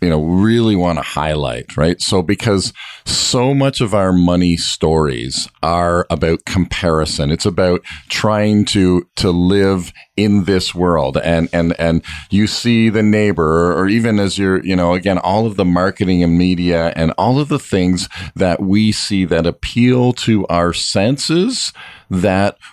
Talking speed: 160 wpm